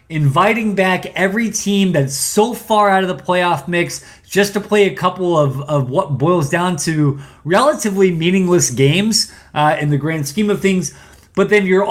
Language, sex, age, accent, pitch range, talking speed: English, male, 20-39, American, 145-190 Hz, 180 wpm